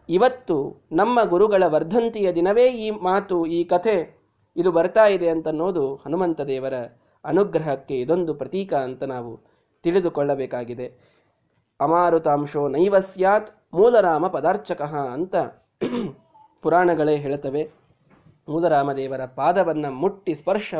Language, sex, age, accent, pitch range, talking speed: Kannada, male, 20-39, native, 150-210 Hz, 90 wpm